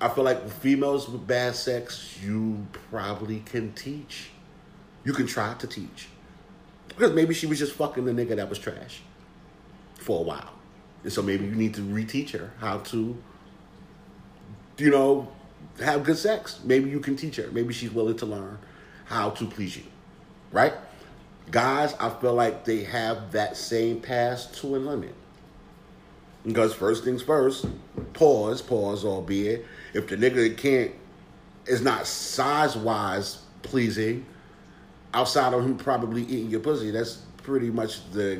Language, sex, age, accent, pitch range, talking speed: English, male, 40-59, American, 105-130 Hz, 155 wpm